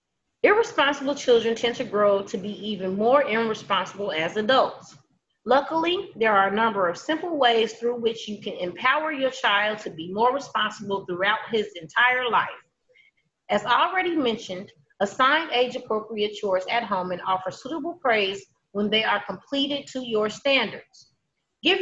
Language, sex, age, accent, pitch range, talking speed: English, female, 30-49, American, 200-265 Hz, 155 wpm